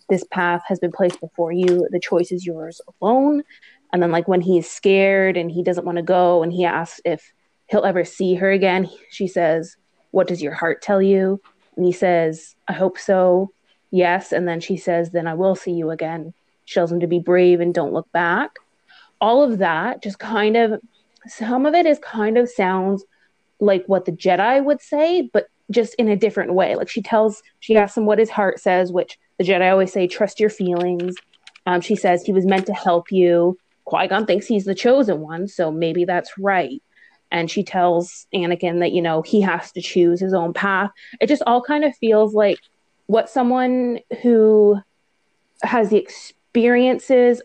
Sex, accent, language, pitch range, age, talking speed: female, American, English, 175-215 Hz, 20-39, 200 wpm